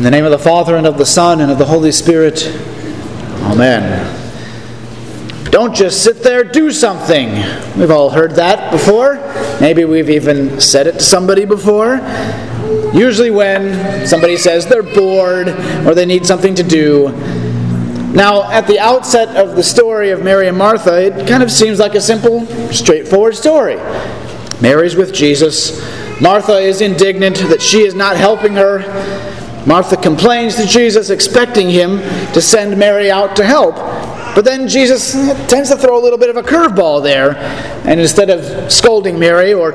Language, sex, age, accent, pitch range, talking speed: English, male, 30-49, American, 150-215 Hz, 165 wpm